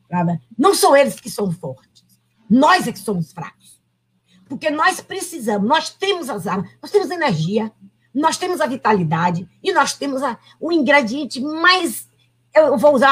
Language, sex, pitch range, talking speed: Portuguese, female, 205-300 Hz, 155 wpm